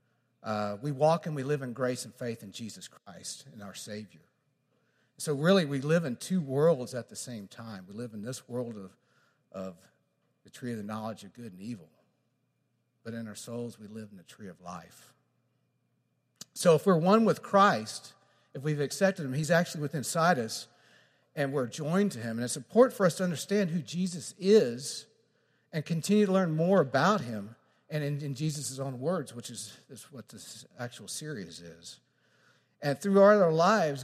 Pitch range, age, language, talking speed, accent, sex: 120-175 Hz, 50-69, English, 190 wpm, American, male